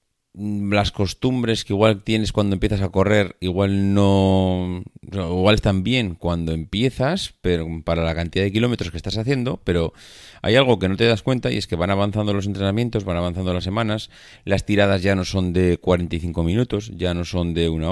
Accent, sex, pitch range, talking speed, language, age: Spanish, male, 90-115 Hz, 190 wpm, Spanish, 30-49